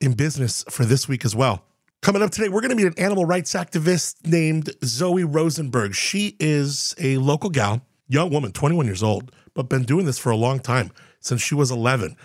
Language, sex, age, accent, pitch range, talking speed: English, male, 30-49, American, 125-165 Hz, 210 wpm